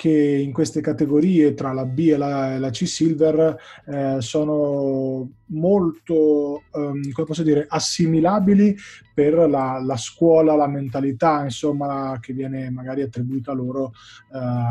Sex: male